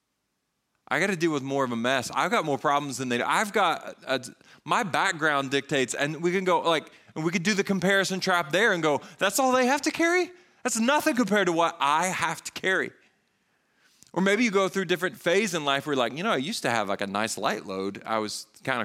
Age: 30-49